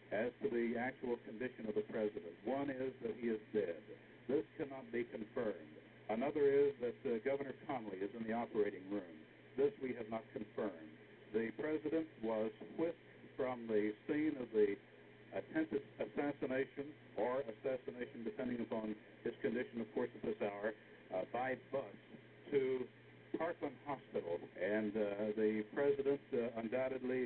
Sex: male